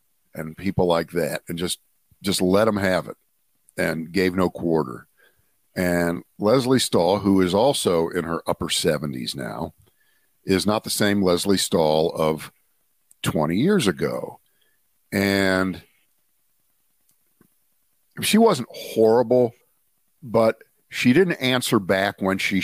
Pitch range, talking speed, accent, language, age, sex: 90-110 Hz, 125 wpm, American, English, 50-69, male